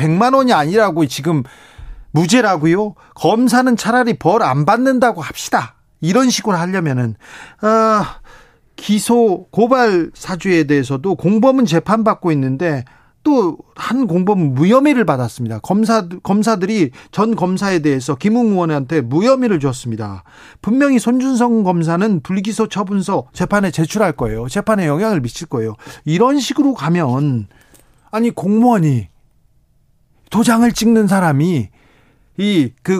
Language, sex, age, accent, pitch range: Korean, male, 40-59, native, 155-230 Hz